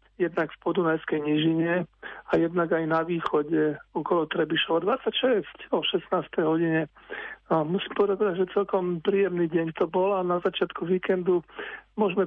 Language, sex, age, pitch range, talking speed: Slovak, male, 50-69, 165-190 Hz, 140 wpm